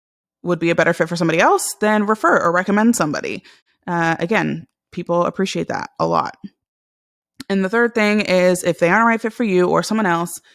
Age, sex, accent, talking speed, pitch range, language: 20-39, female, American, 205 wpm, 165-190 Hz, English